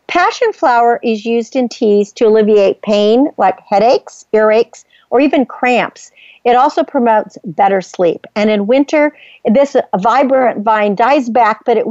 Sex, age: female, 50-69